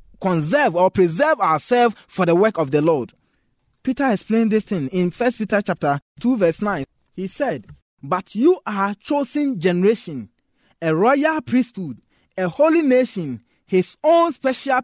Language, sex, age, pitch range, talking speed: English, male, 20-39, 175-255 Hz, 155 wpm